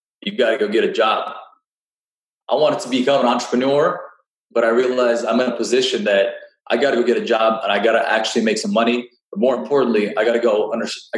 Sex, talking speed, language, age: male, 235 wpm, English, 20-39